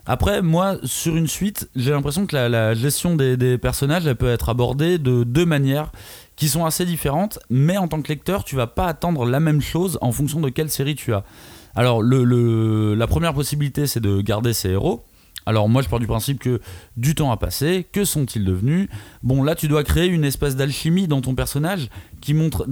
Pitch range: 115-155 Hz